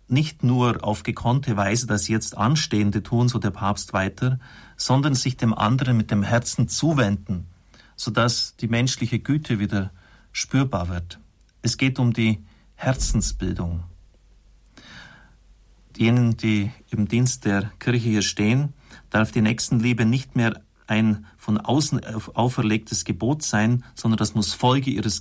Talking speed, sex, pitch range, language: 135 wpm, male, 100-120 Hz, German